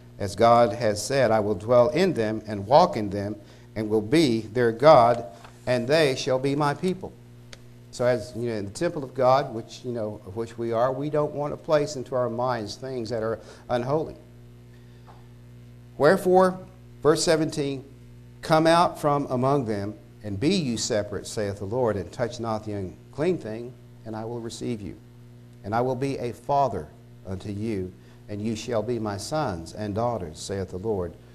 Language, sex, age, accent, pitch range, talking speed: English, male, 60-79, American, 100-120 Hz, 185 wpm